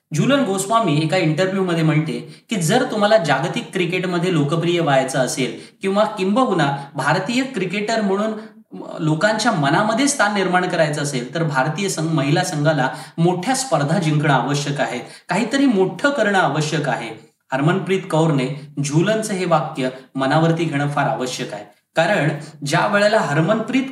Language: Marathi